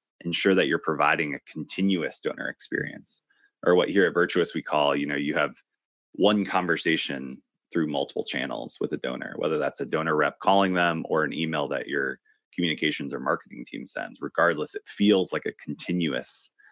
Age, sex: 30-49, male